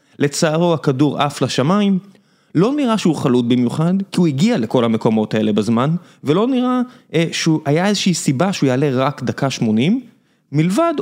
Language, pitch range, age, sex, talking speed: Hebrew, 125-200 Hz, 20-39, male, 150 wpm